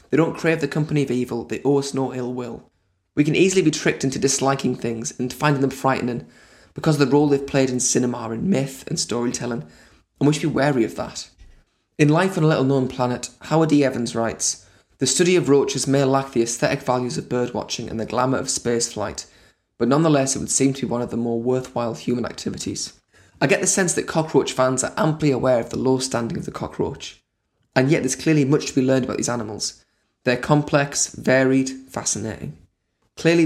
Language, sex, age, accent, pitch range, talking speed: English, male, 20-39, British, 120-145 Hz, 215 wpm